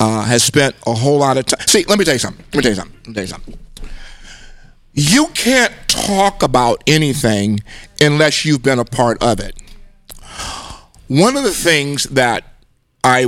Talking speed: 190 wpm